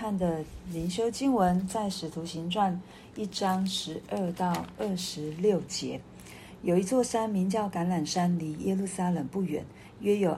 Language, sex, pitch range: Chinese, female, 165-200 Hz